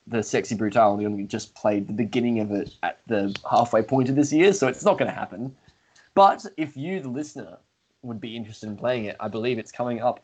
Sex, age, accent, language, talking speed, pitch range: male, 10-29, Australian, English, 235 wpm, 100-130 Hz